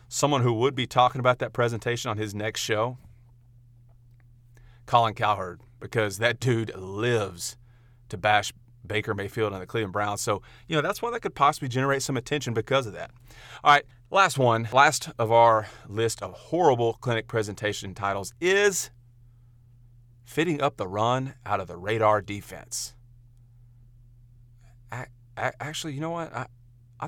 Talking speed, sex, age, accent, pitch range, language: 155 wpm, male, 40-59, American, 105-125 Hz, English